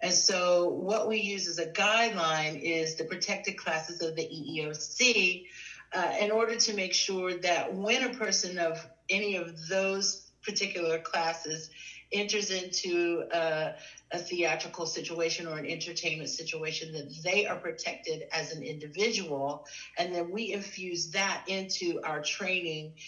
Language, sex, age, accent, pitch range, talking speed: English, female, 40-59, American, 160-190 Hz, 145 wpm